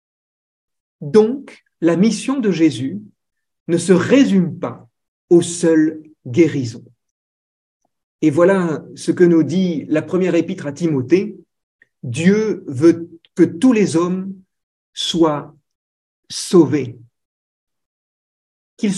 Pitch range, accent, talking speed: 135-190 Hz, French, 100 wpm